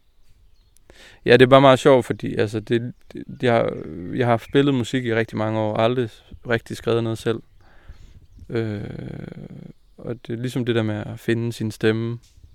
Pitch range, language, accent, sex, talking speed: 105-125 Hz, Danish, native, male, 175 wpm